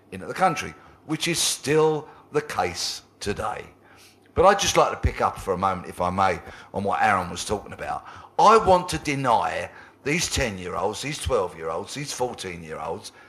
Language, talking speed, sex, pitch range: English, 200 wpm, male, 115-175 Hz